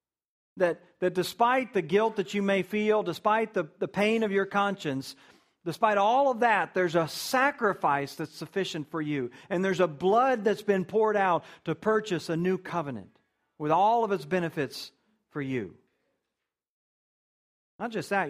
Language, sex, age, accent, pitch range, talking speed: English, male, 40-59, American, 145-190 Hz, 165 wpm